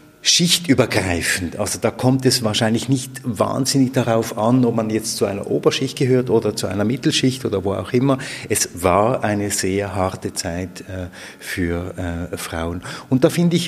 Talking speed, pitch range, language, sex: 160 wpm, 100-125 Hz, German, male